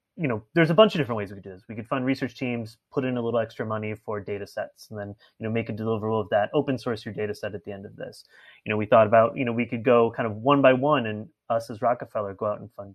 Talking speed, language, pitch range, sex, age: 315 wpm, English, 110-140 Hz, male, 30-49